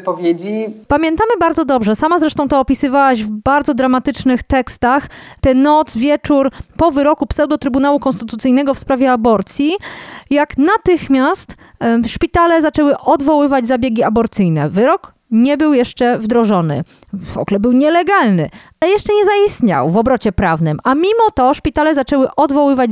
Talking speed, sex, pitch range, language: 135 wpm, female, 235-295 Hz, Polish